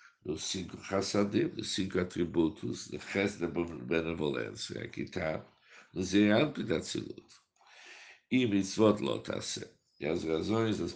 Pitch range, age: 85-110 Hz, 60-79